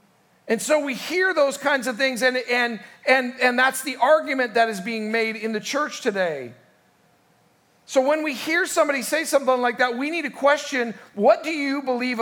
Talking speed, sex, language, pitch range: 195 wpm, male, English, 220-275 Hz